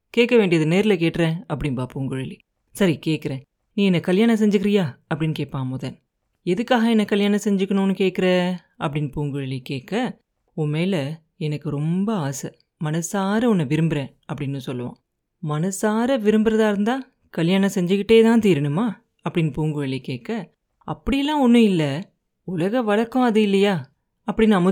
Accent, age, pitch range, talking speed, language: native, 30-49, 155-205 Hz, 125 wpm, Tamil